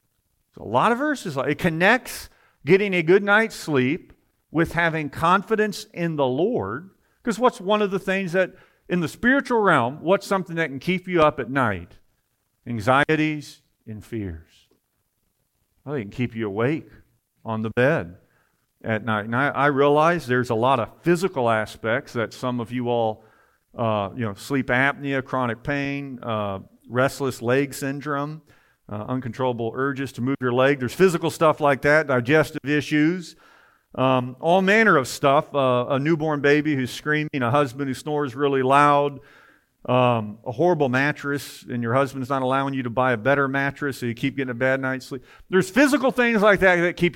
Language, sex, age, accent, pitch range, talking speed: English, male, 50-69, American, 125-165 Hz, 175 wpm